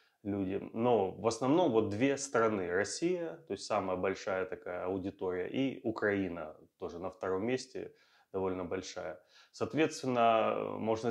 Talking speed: 125 wpm